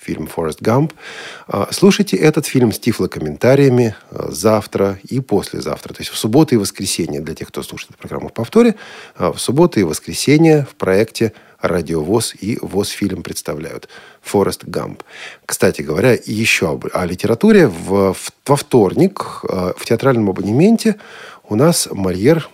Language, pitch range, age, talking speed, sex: Russian, 95-130 Hz, 40-59, 150 wpm, male